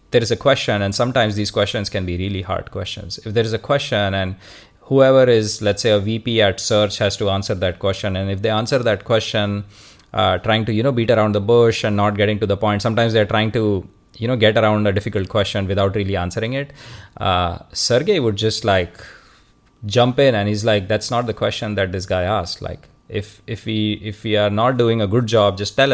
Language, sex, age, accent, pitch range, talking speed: English, male, 20-39, Indian, 95-115 Hz, 230 wpm